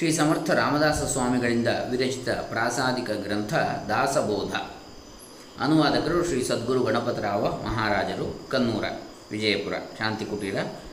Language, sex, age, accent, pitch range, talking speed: Kannada, male, 20-39, native, 115-150 Hz, 80 wpm